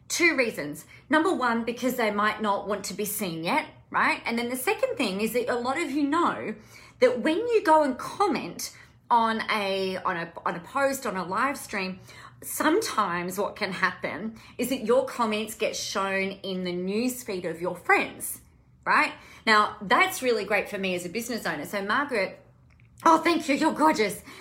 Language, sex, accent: English, female, Australian